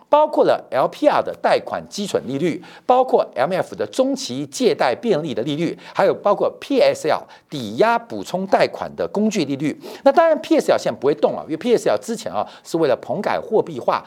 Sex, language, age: male, Chinese, 50-69